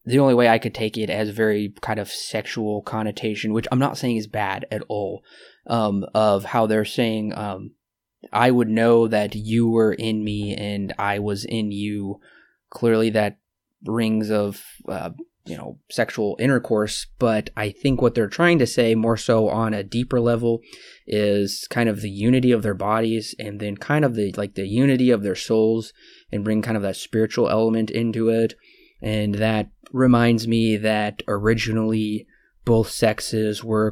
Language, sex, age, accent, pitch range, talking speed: English, male, 20-39, American, 105-115 Hz, 175 wpm